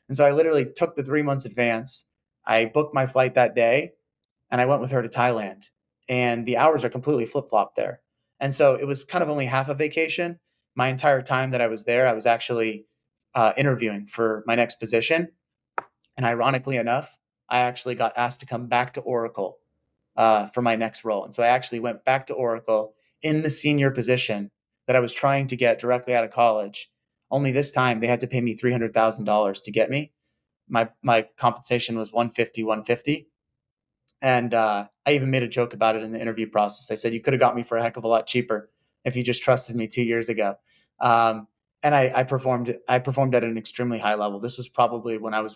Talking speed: 215 wpm